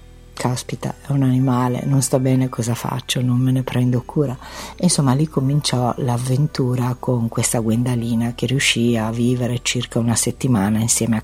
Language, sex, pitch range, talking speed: Italian, female, 120-135 Hz, 165 wpm